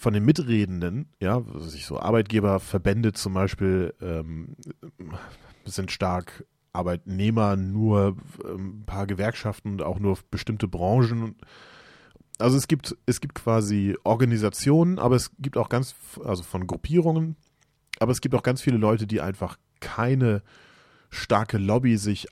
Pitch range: 95-125 Hz